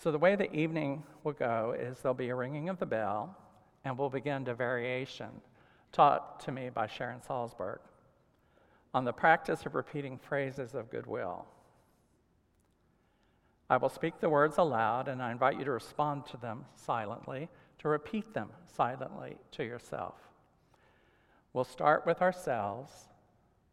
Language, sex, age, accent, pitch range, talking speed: English, male, 50-69, American, 125-155 Hz, 150 wpm